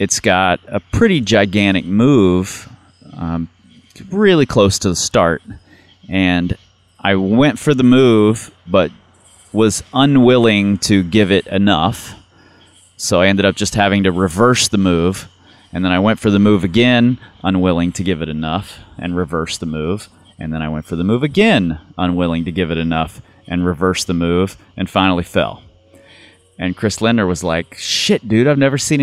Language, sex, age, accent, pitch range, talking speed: English, male, 30-49, American, 85-110 Hz, 170 wpm